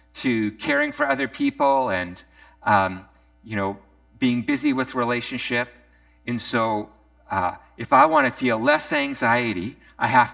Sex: male